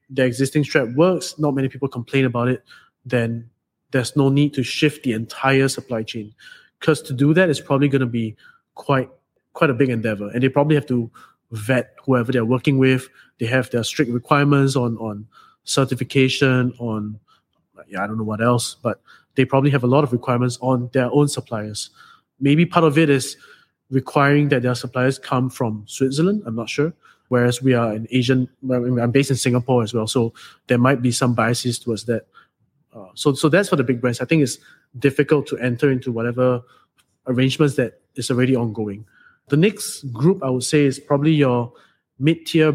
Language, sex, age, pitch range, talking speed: English, male, 20-39, 125-145 Hz, 190 wpm